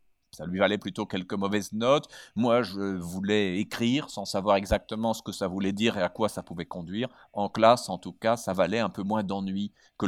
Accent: French